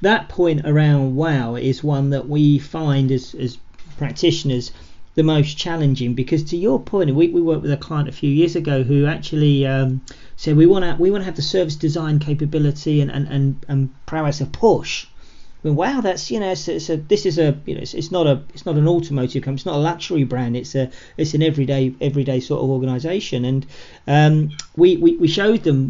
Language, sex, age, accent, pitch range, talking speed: English, male, 40-59, British, 135-160 Hz, 210 wpm